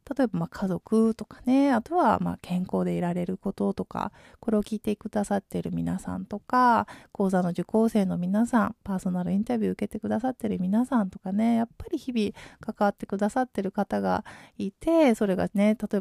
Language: Japanese